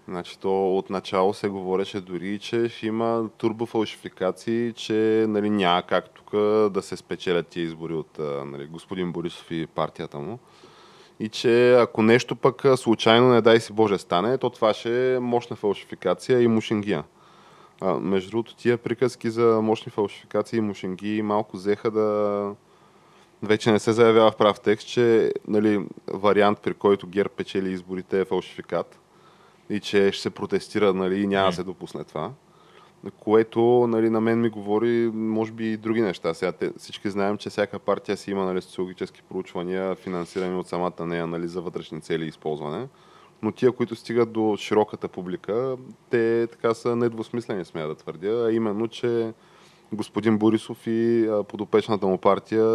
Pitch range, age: 95-115 Hz, 20-39